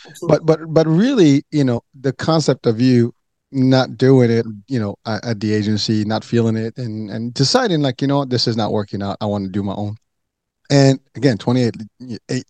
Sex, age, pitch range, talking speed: male, 30-49, 110-135 Hz, 200 wpm